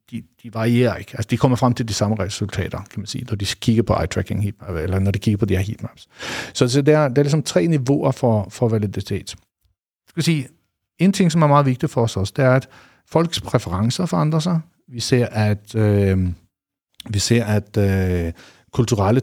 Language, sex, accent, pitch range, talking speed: Danish, male, native, 110-135 Hz, 205 wpm